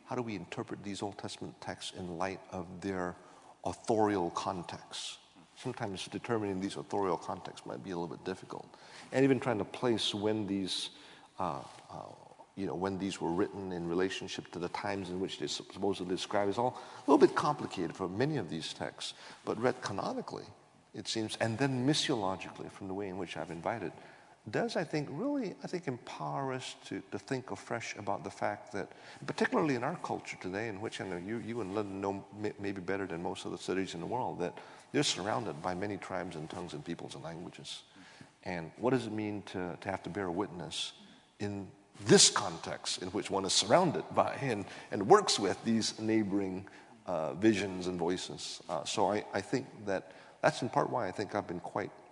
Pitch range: 95-110 Hz